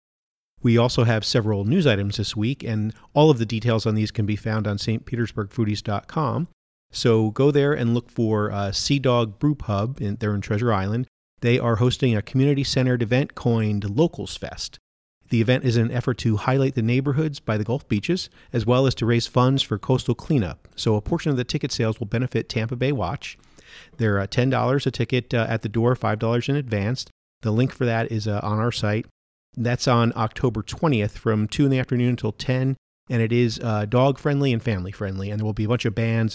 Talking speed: 205 wpm